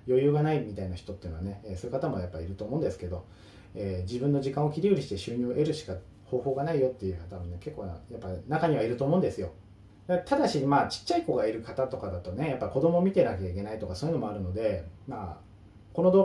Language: Japanese